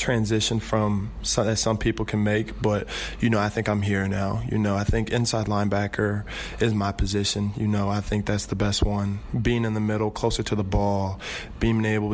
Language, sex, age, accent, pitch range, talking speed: English, male, 20-39, American, 105-110 Hz, 215 wpm